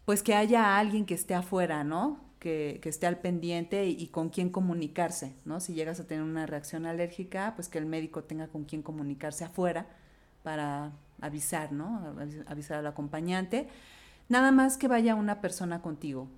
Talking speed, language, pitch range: 175 wpm, Spanish, 165-205 Hz